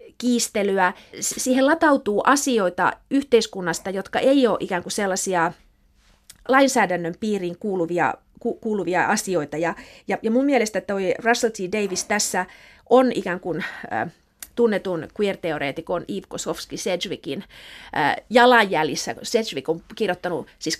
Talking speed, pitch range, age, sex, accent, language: 120 wpm, 180-235 Hz, 30-49, female, native, Finnish